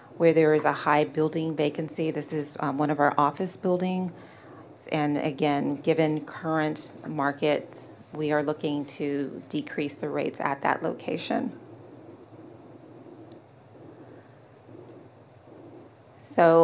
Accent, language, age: American, English, 40-59